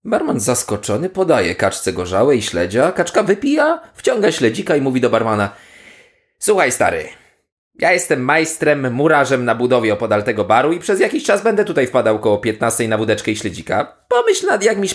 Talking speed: 170 wpm